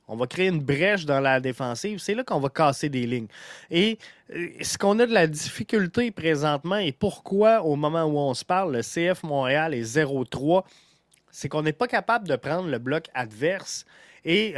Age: 20-39